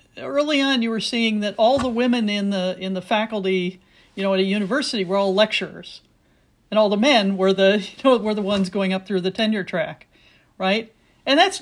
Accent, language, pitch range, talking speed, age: American, English, 190-235 Hz, 215 wpm, 50-69